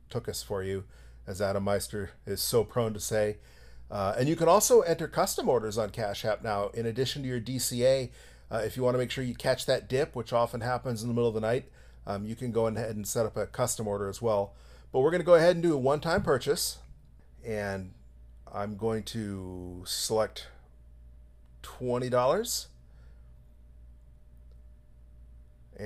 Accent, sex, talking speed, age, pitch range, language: American, male, 180 wpm, 40-59, 90-130 Hz, English